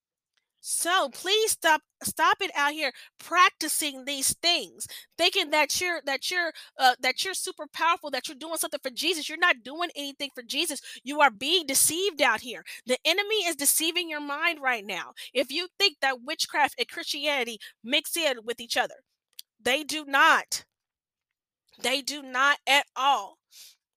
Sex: female